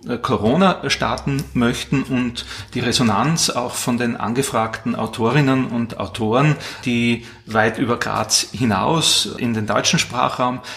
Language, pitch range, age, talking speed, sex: German, 115-135 Hz, 30-49, 125 wpm, male